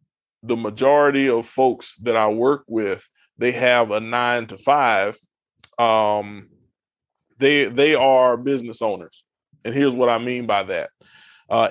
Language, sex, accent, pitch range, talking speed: English, male, American, 115-135 Hz, 145 wpm